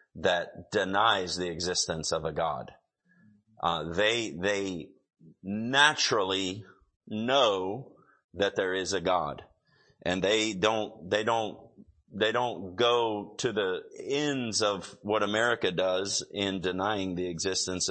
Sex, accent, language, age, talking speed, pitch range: male, American, English, 30-49, 120 wpm, 100-120 Hz